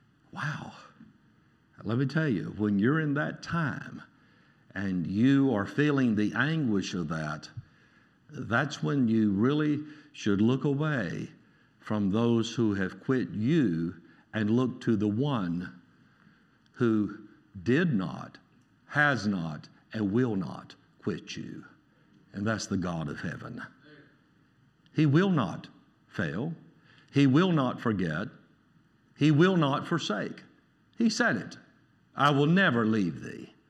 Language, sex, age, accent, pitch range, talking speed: English, male, 60-79, American, 125-175 Hz, 130 wpm